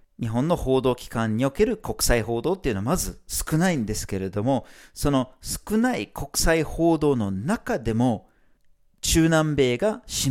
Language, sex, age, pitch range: Japanese, male, 40-59, 110-165 Hz